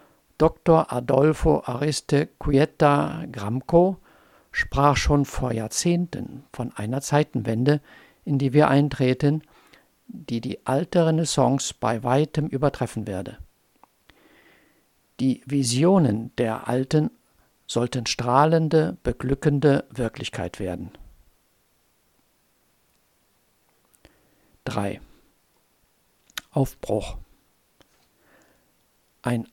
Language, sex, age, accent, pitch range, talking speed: German, male, 50-69, German, 120-150 Hz, 75 wpm